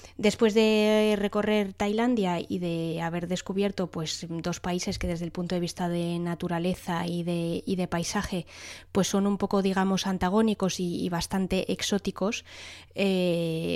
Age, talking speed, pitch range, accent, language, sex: 20-39, 155 wpm, 170-205 Hz, Spanish, English, female